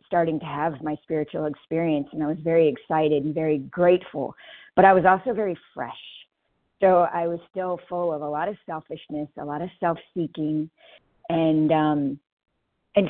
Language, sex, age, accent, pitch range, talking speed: English, female, 50-69, American, 145-190 Hz, 170 wpm